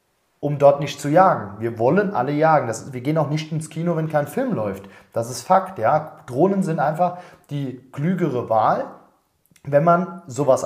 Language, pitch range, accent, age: German, 135-180 Hz, German, 30-49